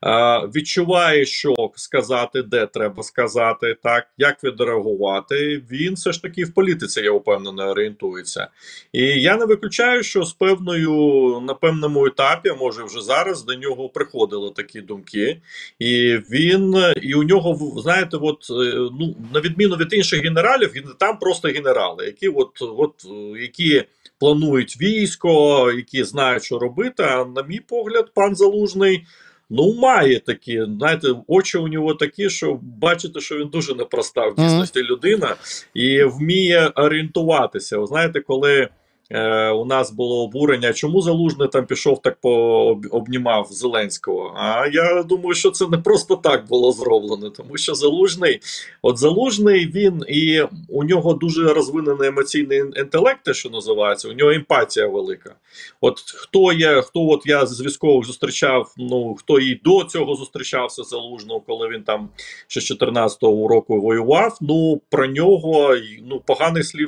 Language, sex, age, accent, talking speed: Ukrainian, male, 40-59, native, 145 wpm